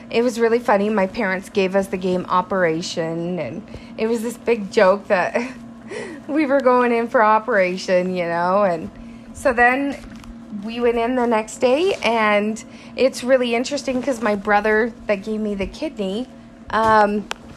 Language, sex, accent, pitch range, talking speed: English, female, American, 200-245 Hz, 165 wpm